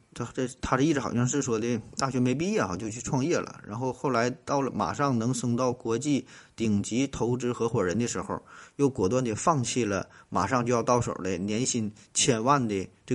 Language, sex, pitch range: Chinese, male, 100-125 Hz